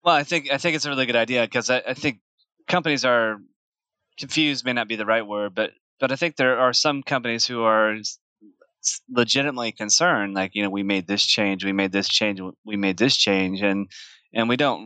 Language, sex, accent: English, male, American